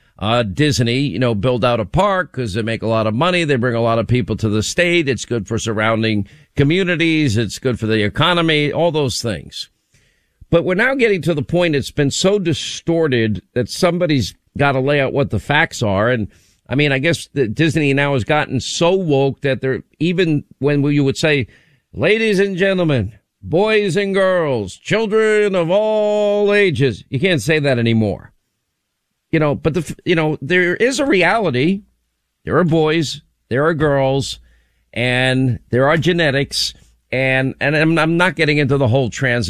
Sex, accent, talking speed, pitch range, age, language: male, American, 185 wpm, 120-165 Hz, 50-69, English